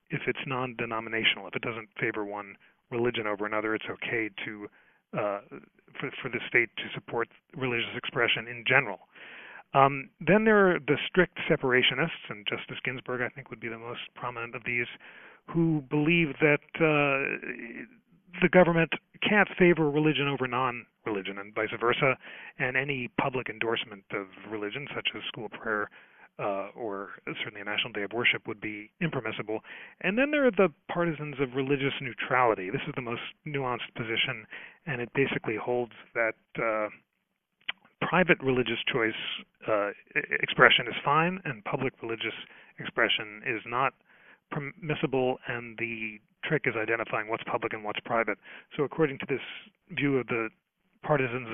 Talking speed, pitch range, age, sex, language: 155 wpm, 115-155 Hz, 40-59, male, English